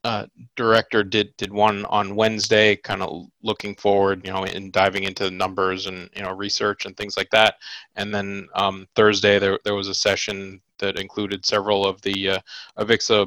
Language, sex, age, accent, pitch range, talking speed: English, male, 20-39, American, 100-105 Hz, 195 wpm